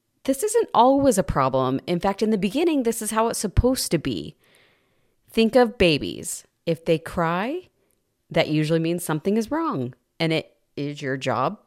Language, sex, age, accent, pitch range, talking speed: English, female, 30-49, American, 155-235 Hz, 175 wpm